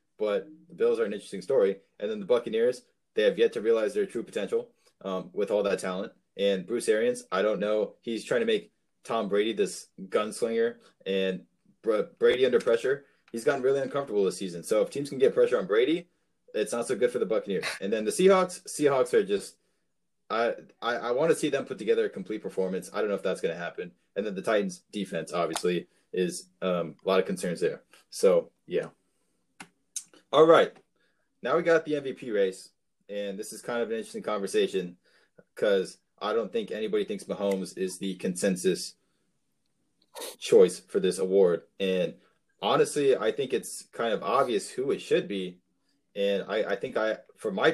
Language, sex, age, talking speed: English, male, 20-39, 195 wpm